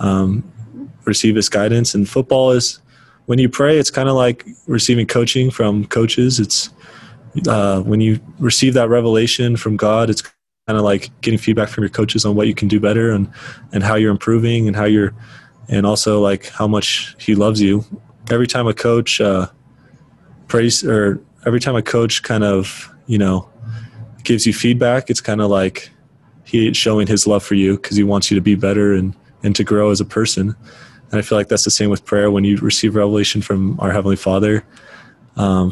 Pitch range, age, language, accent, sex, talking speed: 100-115 Hz, 20-39, English, American, male, 200 wpm